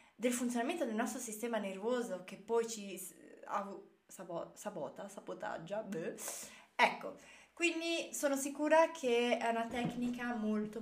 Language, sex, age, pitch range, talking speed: Italian, female, 20-39, 205-275 Hz, 115 wpm